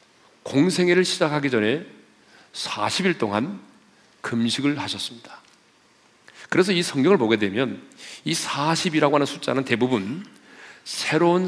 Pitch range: 120-160 Hz